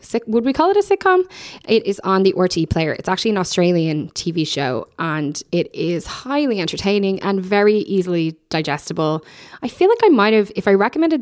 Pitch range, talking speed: 155-210 Hz, 195 wpm